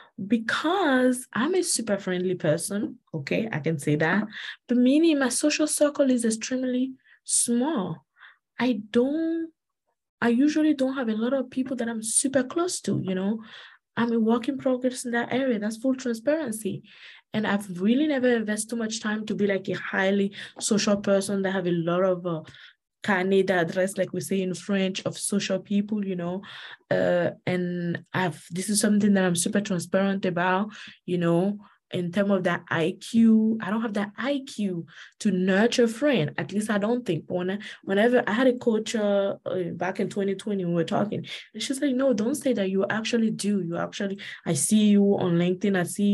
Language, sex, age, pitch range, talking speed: English, female, 20-39, 185-235 Hz, 185 wpm